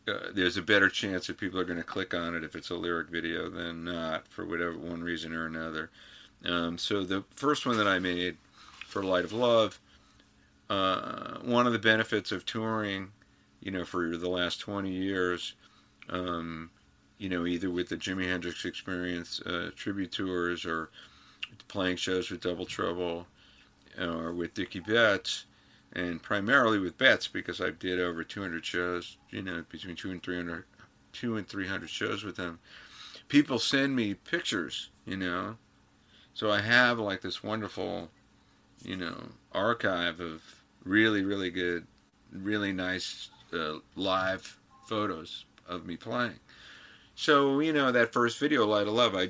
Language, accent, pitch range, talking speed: English, American, 85-100 Hz, 165 wpm